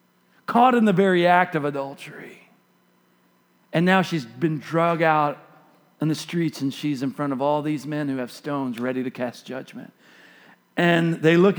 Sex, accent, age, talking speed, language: male, American, 40-59, 175 wpm, English